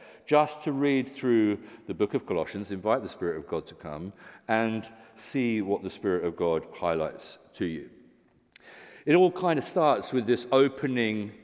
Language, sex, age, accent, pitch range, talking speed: English, male, 50-69, British, 105-130 Hz, 175 wpm